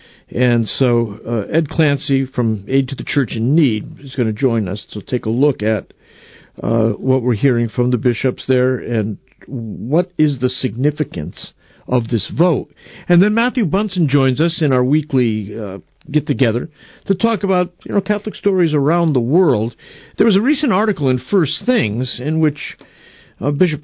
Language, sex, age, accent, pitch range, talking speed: English, male, 50-69, American, 125-170 Hz, 180 wpm